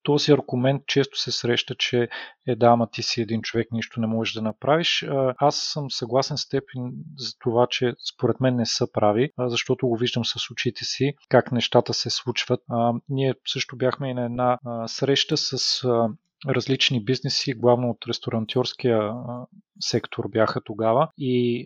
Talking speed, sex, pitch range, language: 165 wpm, male, 115-140 Hz, Bulgarian